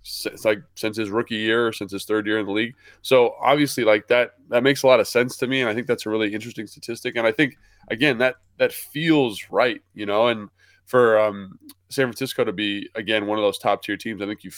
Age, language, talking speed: 20-39, English, 250 wpm